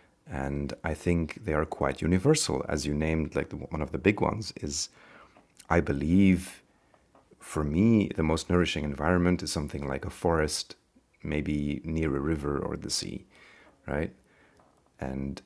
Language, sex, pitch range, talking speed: English, male, 75-100 Hz, 155 wpm